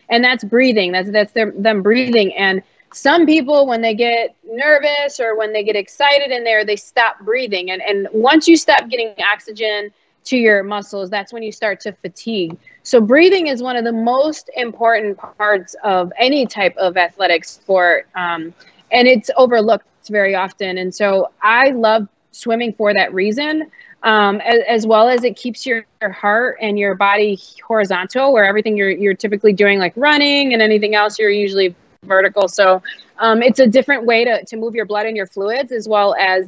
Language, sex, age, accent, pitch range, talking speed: English, female, 20-39, American, 200-245 Hz, 190 wpm